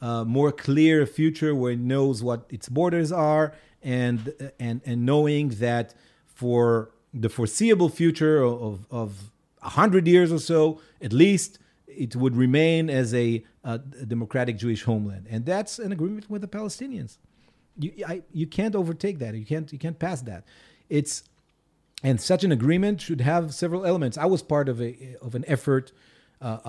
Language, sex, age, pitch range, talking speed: English, male, 40-59, 115-150 Hz, 170 wpm